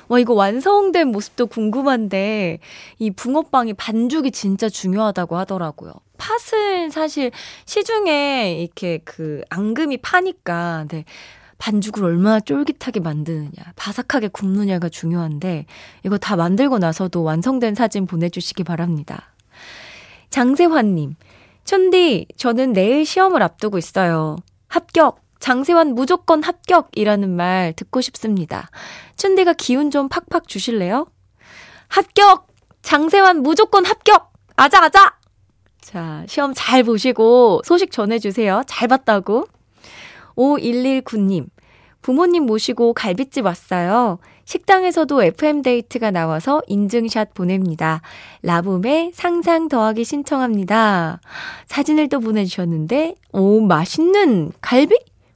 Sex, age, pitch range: female, 20-39, 185-300 Hz